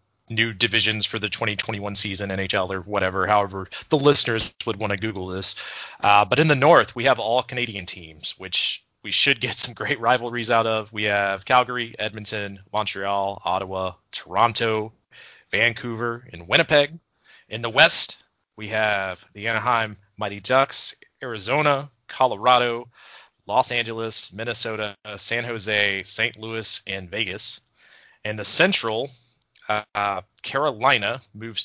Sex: male